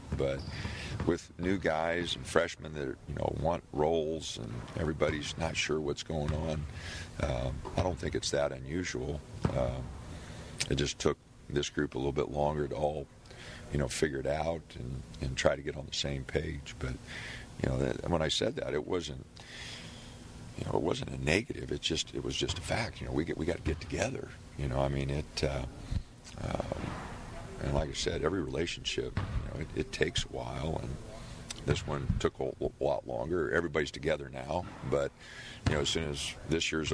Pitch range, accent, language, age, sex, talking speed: 75-90 Hz, American, English, 50-69, male, 200 wpm